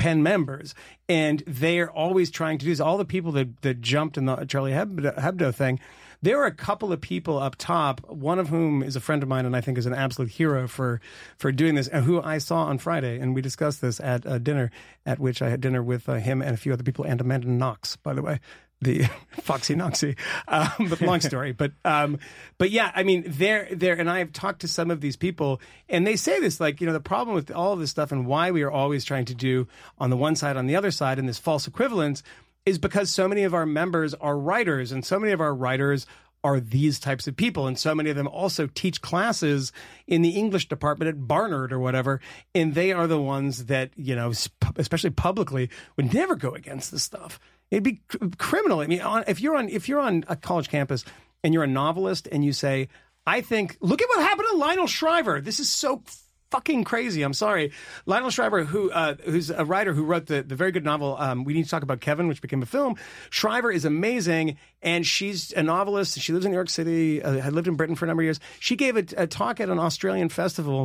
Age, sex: 30-49, male